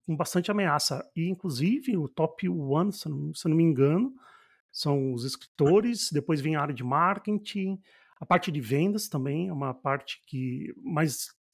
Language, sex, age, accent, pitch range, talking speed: Portuguese, male, 40-59, Brazilian, 145-185 Hz, 170 wpm